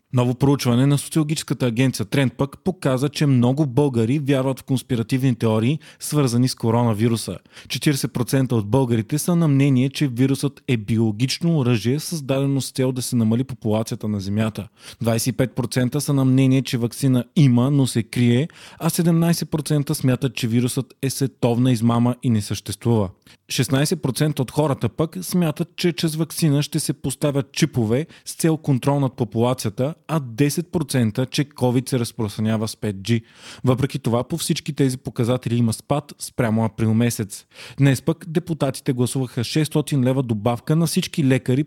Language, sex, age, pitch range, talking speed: Bulgarian, male, 20-39, 120-145 Hz, 150 wpm